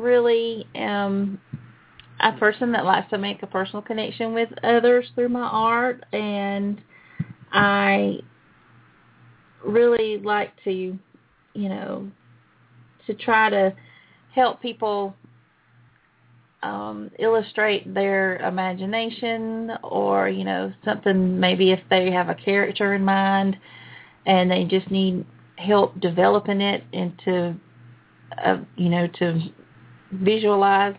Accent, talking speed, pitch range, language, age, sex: American, 110 wpm, 170-205 Hz, English, 30-49, female